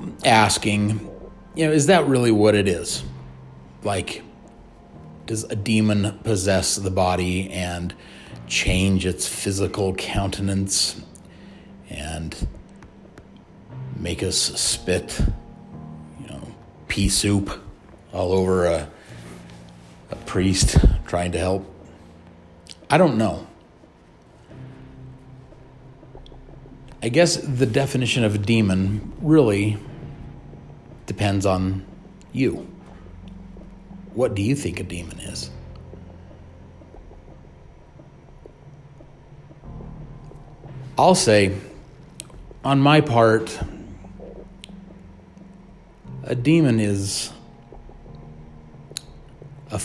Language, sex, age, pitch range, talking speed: English, male, 40-59, 85-110 Hz, 80 wpm